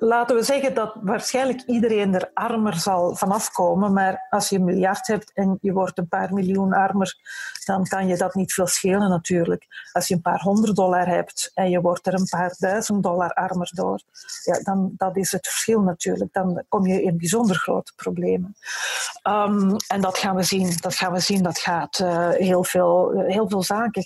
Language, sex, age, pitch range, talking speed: Dutch, female, 40-59, 180-210 Hz, 190 wpm